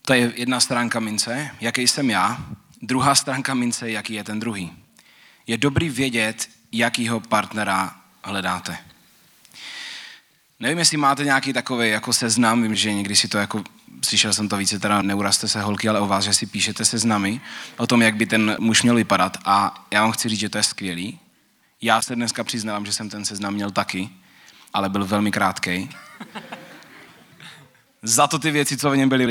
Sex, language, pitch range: male, Czech, 100-120 Hz